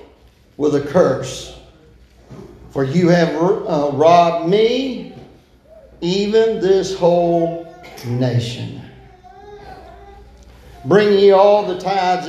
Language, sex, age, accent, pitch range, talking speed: English, male, 50-69, American, 170-225 Hz, 90 wpm